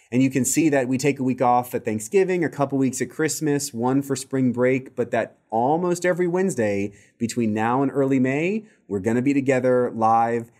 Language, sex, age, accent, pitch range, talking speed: English, male, 30-49, American, 110-135 Hz, 205 wpm